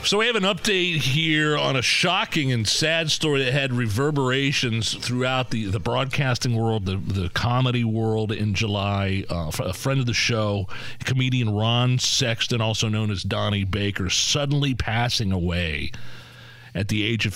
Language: English